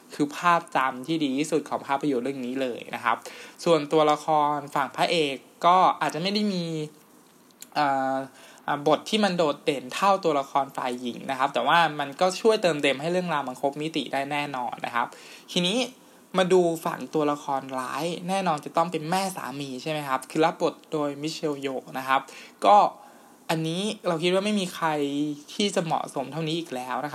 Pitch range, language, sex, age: 140-170 Hz, Thai, male, 20-39